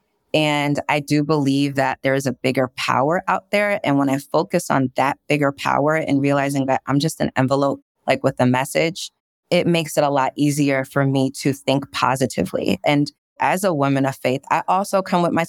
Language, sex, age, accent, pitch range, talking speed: English, female, 20-39, American, 140-175 Hz, 205 wpm